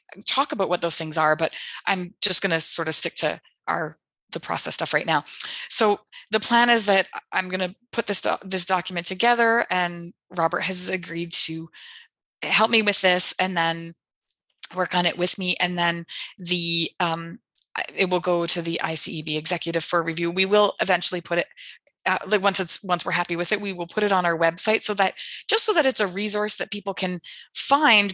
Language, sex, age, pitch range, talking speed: English, female, 20-39, 170-210 Hz, 205 wpm